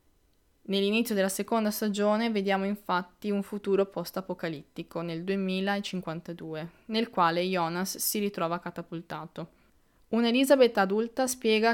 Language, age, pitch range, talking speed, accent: Italian, 20-39, 170-205 Hz, 100 wpm, native